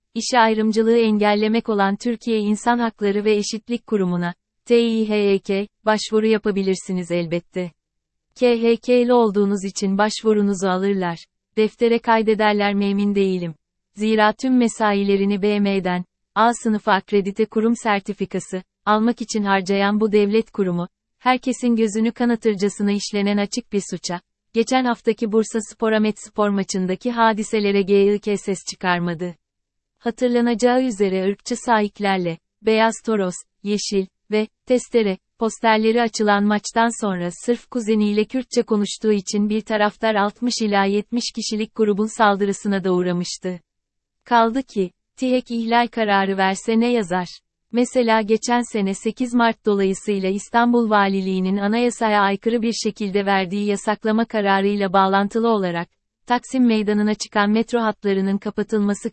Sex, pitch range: female, 195-230 Hz